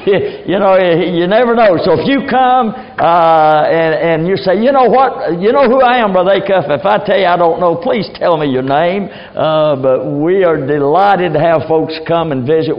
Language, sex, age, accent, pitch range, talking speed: English, male, 60-79, American, 165-225 Hz, 220 wpm